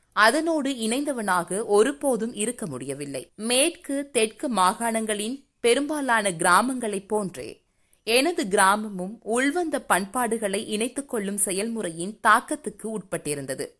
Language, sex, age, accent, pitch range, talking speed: Tamil, female, 20-39, native, 190-255 Hz, 85 wpm